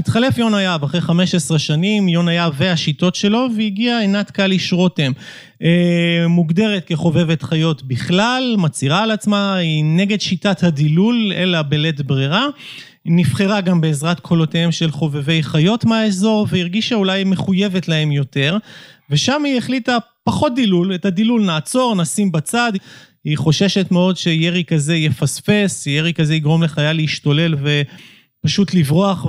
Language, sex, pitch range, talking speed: Hebrew, male, 160-210 Hz, 135 wpm